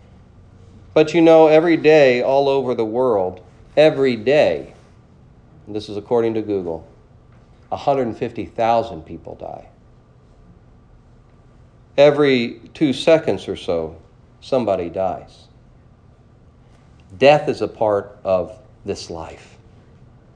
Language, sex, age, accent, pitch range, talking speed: English, male, 40-59, American, 105-125 Hz, 100 wpm